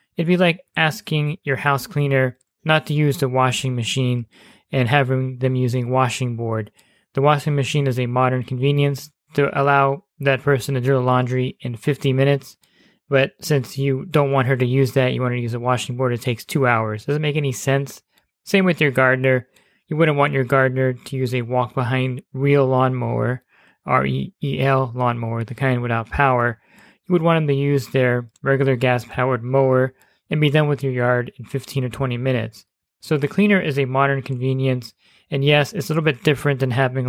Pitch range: 125-140 Hz